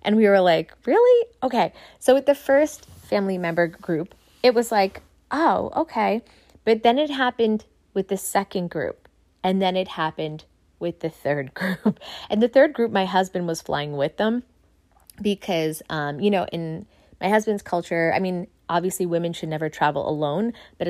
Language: English